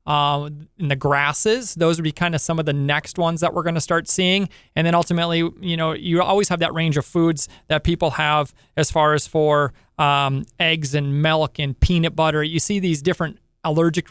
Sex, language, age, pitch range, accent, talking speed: male, English, 30-49, 150-175 Hz, American, 215 wpm